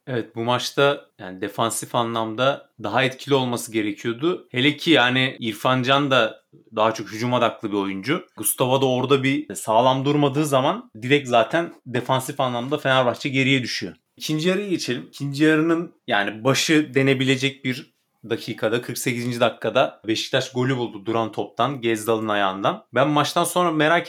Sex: male